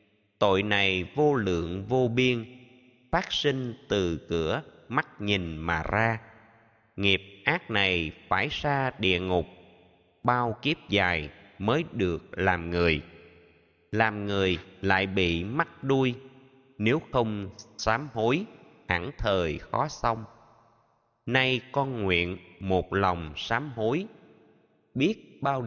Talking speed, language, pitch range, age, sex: 120 wpm, Vietnamese, 90-125 Hz, 20-39, male